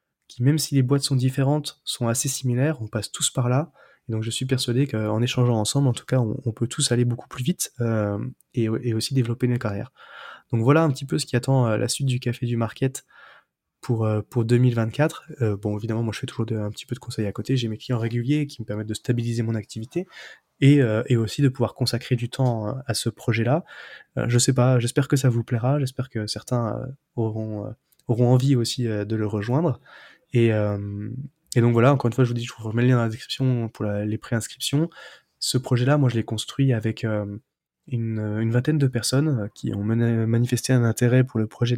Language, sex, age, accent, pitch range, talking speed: French, male, 20-39, French, 115-130 Hz, 230 wpm